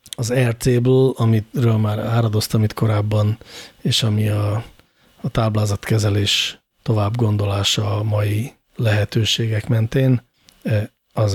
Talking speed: 95 wpm